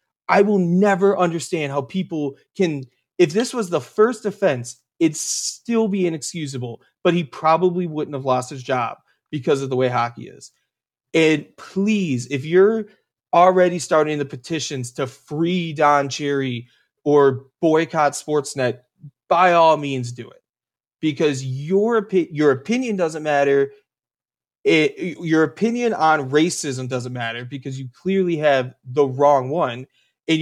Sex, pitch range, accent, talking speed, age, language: male, 135-180 Hz, American, 140 wpm, 30-49, English